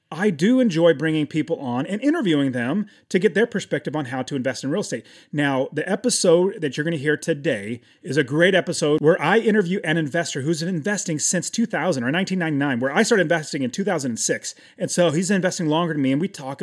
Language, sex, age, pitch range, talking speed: English, male, 30-49, 145-200 Hz, 215 wpm